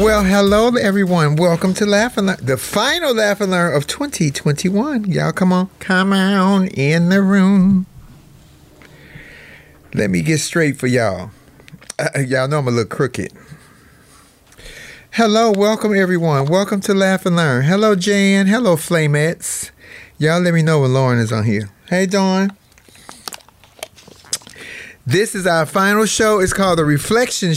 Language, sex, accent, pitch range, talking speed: English, male, American, 140-190 Hz, 150 wpm